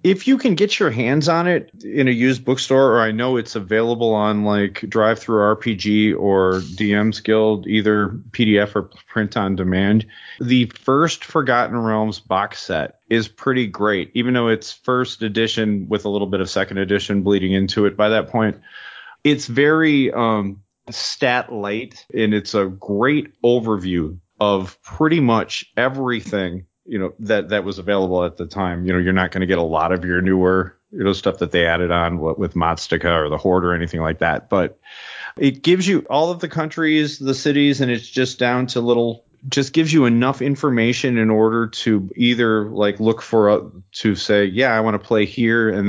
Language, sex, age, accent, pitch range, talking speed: English, male, 30-49, American, 95-120 Hz, 185 wpm